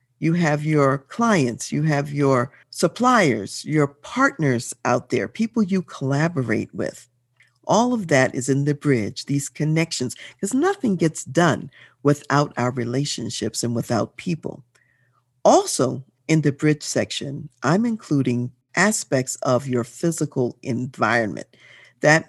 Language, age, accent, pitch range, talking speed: English, 50-69, American, 125-180 Hz, 130 wpm